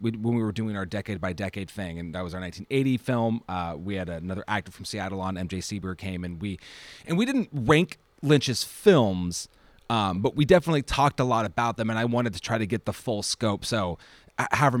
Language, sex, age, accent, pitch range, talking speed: English, male, 30-49, American, 100-135 Hz, 225 wpm